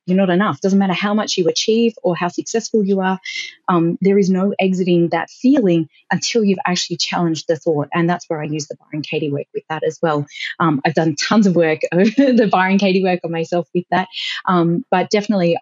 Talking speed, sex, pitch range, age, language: 220 wpm, female, 170-210 Hz, 30-49, English